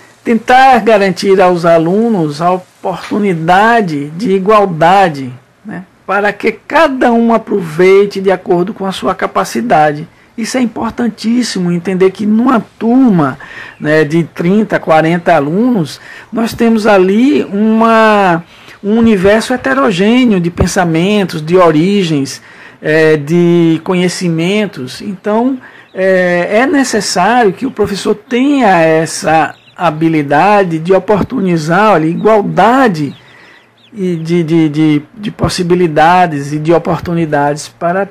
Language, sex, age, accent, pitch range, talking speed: Portuguese, male, 60-79, Brazilian, 165-220 Hz, 100 wpm